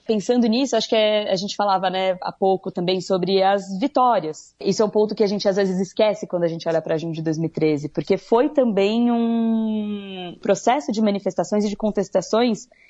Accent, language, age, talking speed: Brazilian, Portuguese, 20-39, 200 wpm